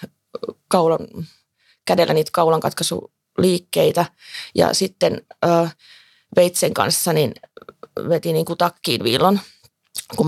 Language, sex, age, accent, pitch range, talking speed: Finnish, female, 30-49, native, 165-195 Hz, 95 wpm